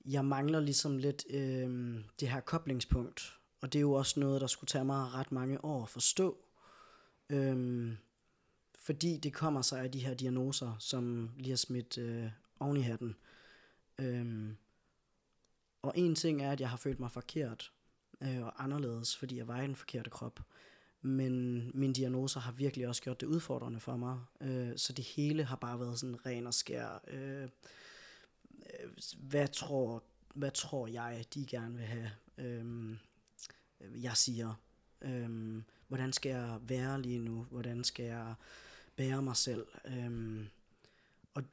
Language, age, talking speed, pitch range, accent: Danish, 20-39, 160 wpm, 120-140 Hz, native